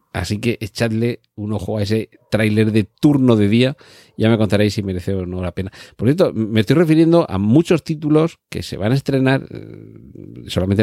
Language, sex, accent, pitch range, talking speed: Spanish, male, Spanish, 95-120 Hz, 195 wpm